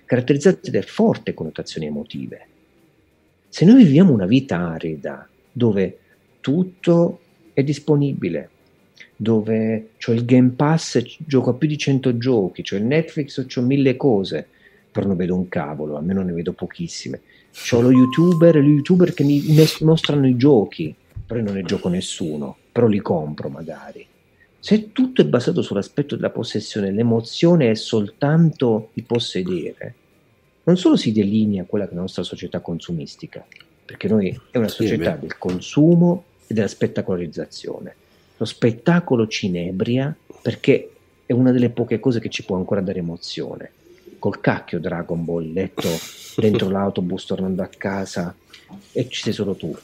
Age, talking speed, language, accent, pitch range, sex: 50-69, 150 wpm, Italian, native, 95-150 Hz, male